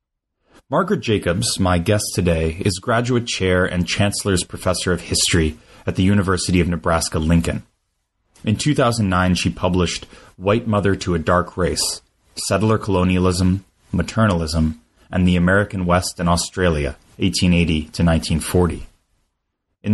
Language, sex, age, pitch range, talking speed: English, male, 30-49, 85-100 Hz, 125 wpm